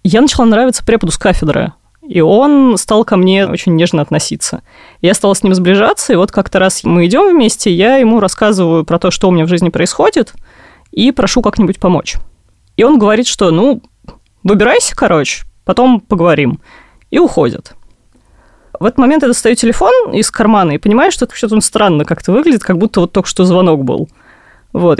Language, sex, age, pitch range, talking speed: Russian, female, 20-39, 170-235 Hz, 185 wpm